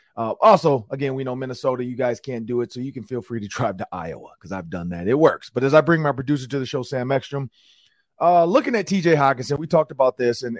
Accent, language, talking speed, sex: American, English, 265 wpm, male